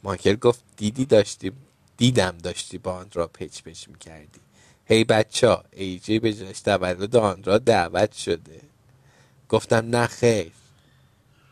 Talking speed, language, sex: 130 wpm, Persian, male